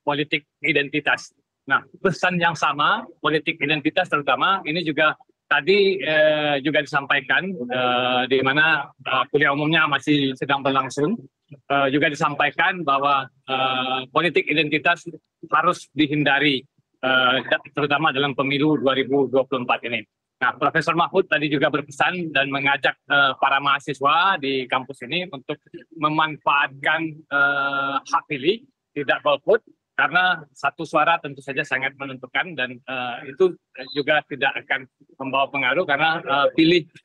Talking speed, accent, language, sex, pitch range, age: 125 wpm, native, Indonesian, male, 140-165 Hz, 20-39